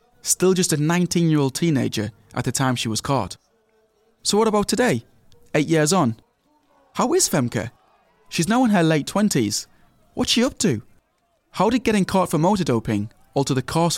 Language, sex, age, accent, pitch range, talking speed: English, male, 20-39, British, 115-155 Hz, 175 wpm